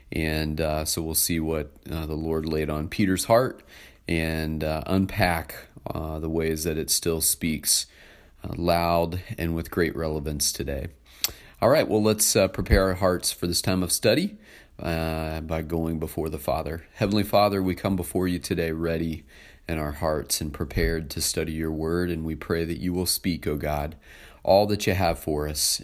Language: English